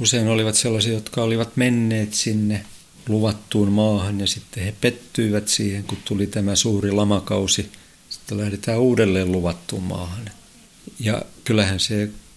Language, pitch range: Finnish, 95-110 Hz